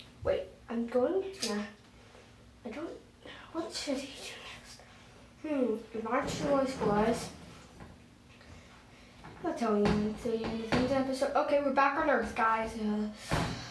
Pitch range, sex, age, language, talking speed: 245-320 Hz, female, 10-29, English, 125 wpm